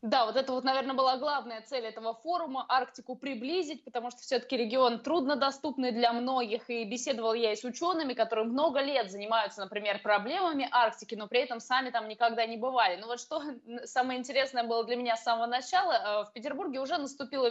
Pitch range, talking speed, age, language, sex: 230-275 Hz, 190 wpm, 20-39, Russian, female